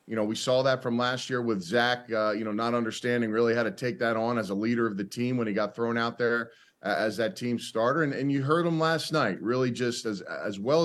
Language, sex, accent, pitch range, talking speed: English, male, American, 115-140 Hz, 270 wpm